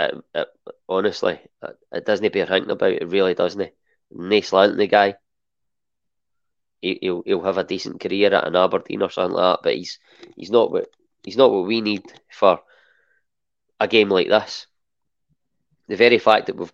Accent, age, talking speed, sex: British, 20-39, 185 wpm, male